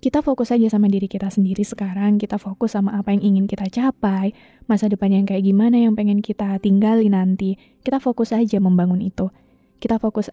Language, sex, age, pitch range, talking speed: Indonesian, female, 20-39, 210-245 Hz, 190 wpm